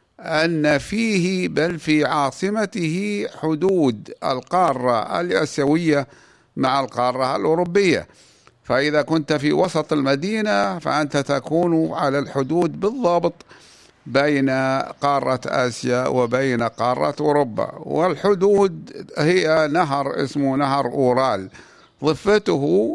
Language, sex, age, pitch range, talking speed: Arabic, male, 50-69, 130-155 Hz, 90 wpm